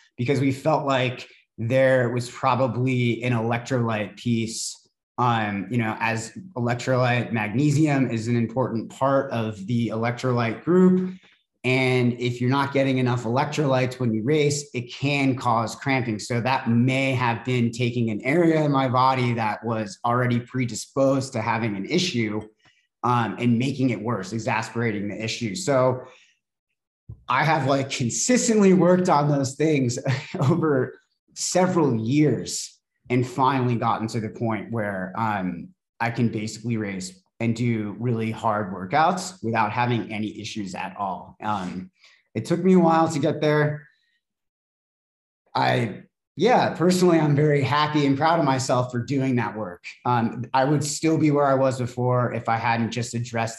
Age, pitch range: 30-49, 115-140 Hz